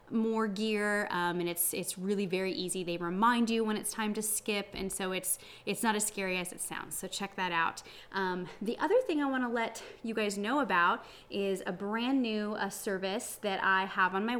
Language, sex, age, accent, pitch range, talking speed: English, female, 20-39, American, 185-225 Hz, 225 wpm